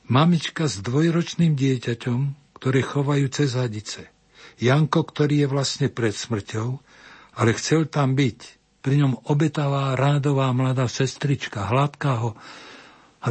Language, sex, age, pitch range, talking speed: Slovak, male, 60-79, 120-150 Hz, 120 wpm